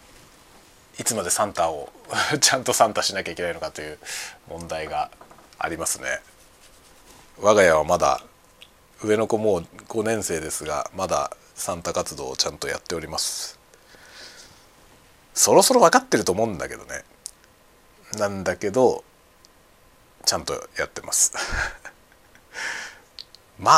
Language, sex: Japanese, male